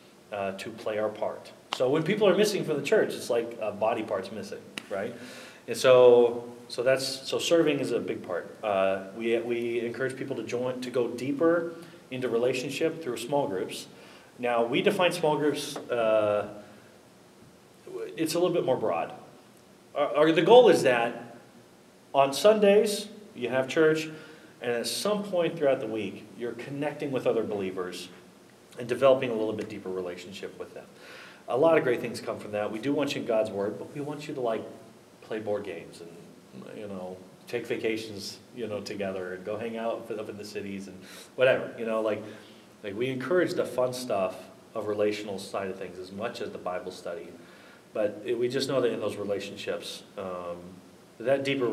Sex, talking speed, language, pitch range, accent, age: male, 190 wpm, English, 105-150 Hz, American, 30-49